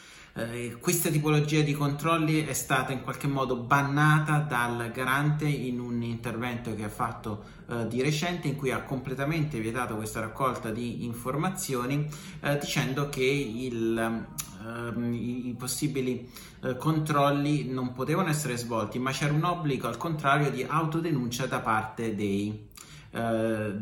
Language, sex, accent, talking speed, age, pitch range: Italian, male, native, 135 wpm, 30-49, 115-145 Hz